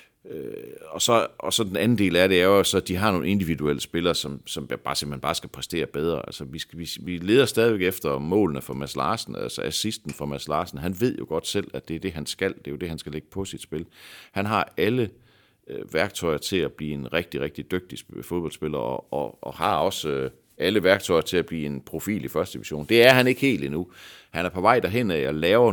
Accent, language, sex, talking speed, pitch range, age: native, Danish, male, 250 wpm, 70-100 Hz, 60-79